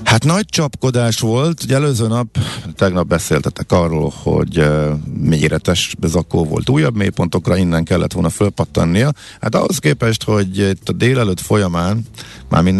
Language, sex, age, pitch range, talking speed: Hungarian, male, 50-69, 80-105 Hz, 135 wpm